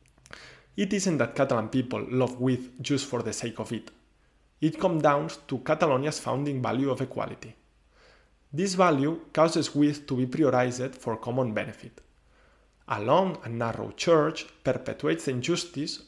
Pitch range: 115-155 Hz